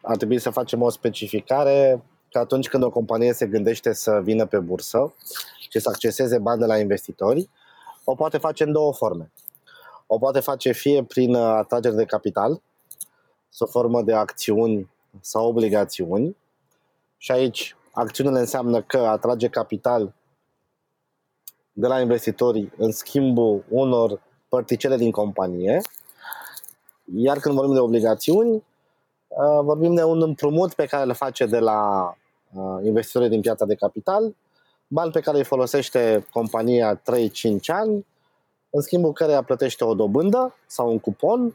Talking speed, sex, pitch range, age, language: 140 wpm, male, 115-150 Hz, 20-39, Romanian